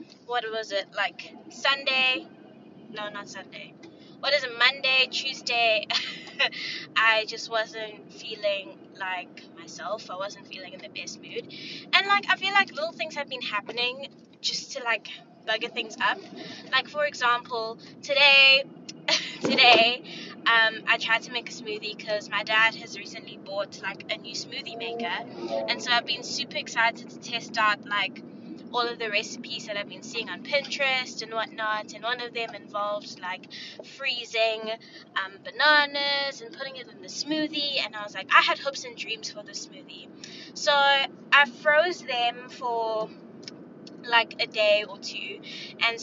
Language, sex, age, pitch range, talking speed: English, female, 10-29, 220-280 Hz, 165 wpm